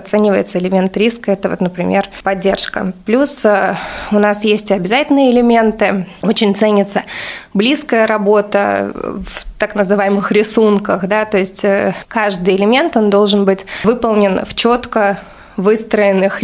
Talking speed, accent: 115 wpm, native